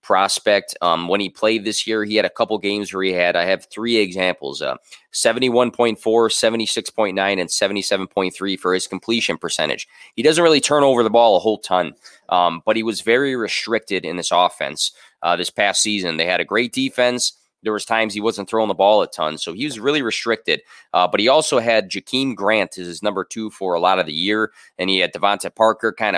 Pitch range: 95-115 Hz